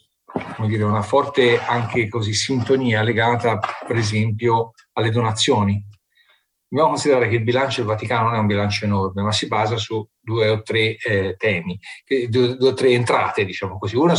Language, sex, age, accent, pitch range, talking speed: Italian, male, 40-59, native, 105-125 Hz, 165 wpm